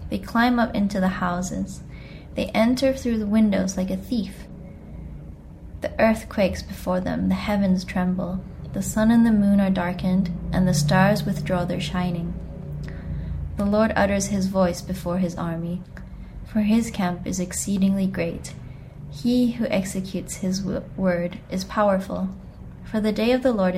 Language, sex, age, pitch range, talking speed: English, female, 20-39, 175-210 Hz, 155 wpm